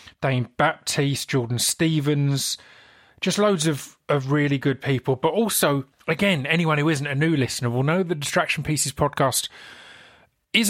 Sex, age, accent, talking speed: male, 30-49, British, 150 wpm